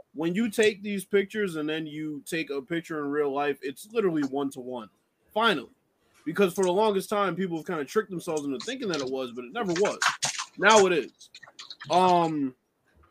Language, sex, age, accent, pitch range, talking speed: English, male, 20-39, American, 145-185 Hz, 190 wpm